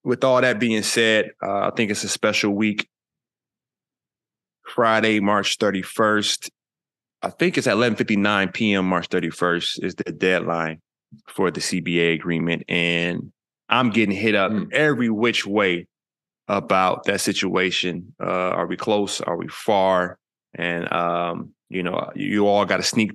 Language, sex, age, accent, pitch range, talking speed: English, male, 20-39, American, 85-105 Hz, 150 wpm